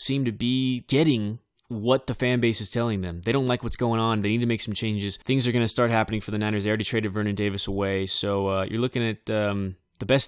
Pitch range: 110-135 Hz